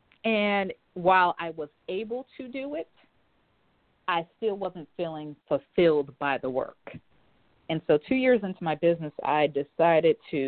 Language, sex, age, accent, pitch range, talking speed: English, female, 40-59, American, 140-165 Hz, 150 wpm